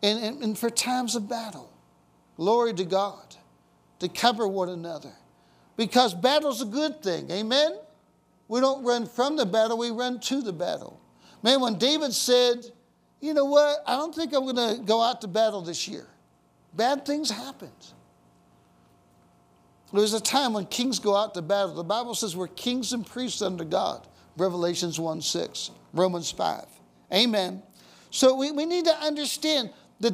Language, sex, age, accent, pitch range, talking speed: English, male, 60-79, American, 200-265 Hz, 165 wpm